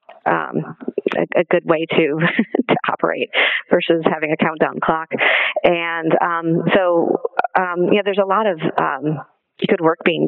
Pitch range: 165-185 Hz